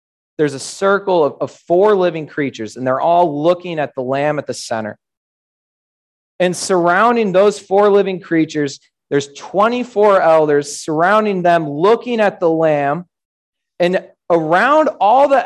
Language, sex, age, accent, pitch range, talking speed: English, male, 20-39, American, 145-200 Hz, 145 wpm